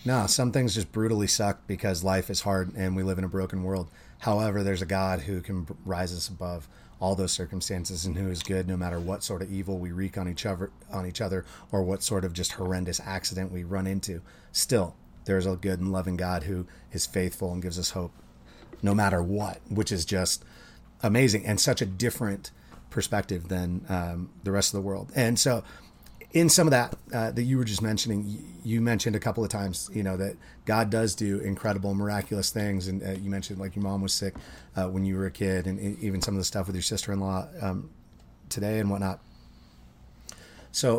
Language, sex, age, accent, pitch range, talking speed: English, male, 30-49, American, 95-110 Hz, 215 wpm